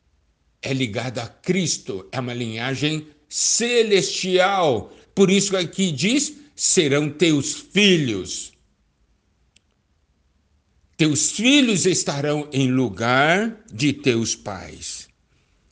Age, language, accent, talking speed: 60-79, Portuguese, Brazilian, 90 wpm